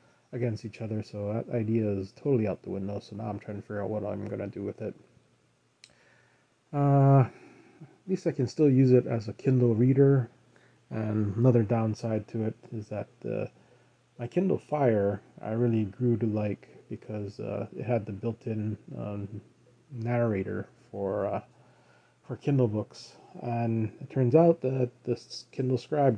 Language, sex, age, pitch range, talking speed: English, male, 20-39, 105-125 Hz, 165 wpm